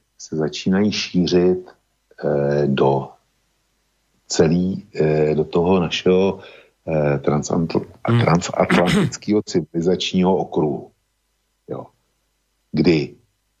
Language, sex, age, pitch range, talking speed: Slovak, male, 50-69, 75-85 Hz, 50 wpm